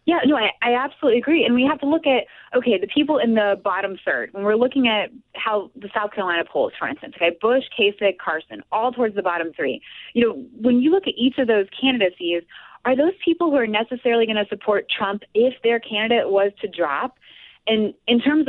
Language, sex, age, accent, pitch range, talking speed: English, female, 20-39, American, 180-245 Hz, 220 wpm